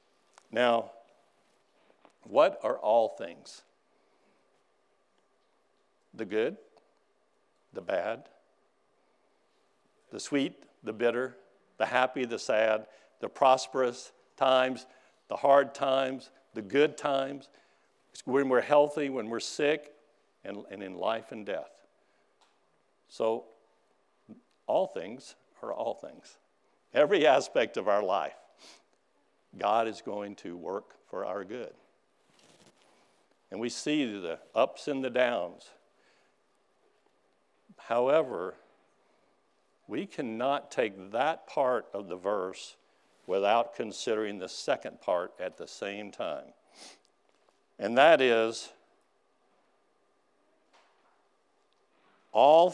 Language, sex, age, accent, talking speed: English, male, 60-79, American, 100 wpm